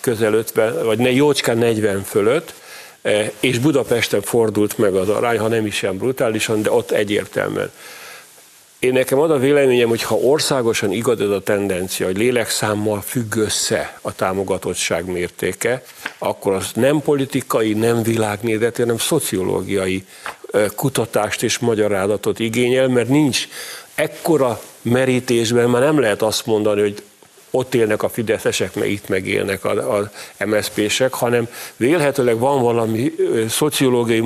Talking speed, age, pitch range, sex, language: 135 wpm, 50-69, 110-130 Hz, male, Hungarian